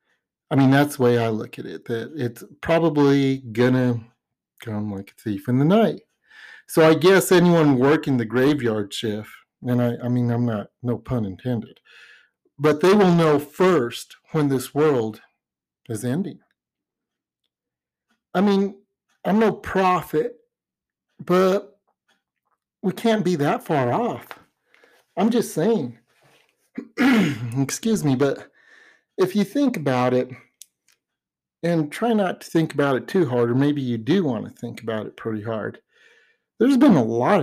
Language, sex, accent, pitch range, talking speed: English, male, American, 125-190 Hz, 150 wpm